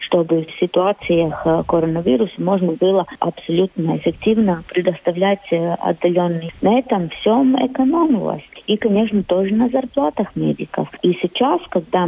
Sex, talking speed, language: female, 115 wpm, Russian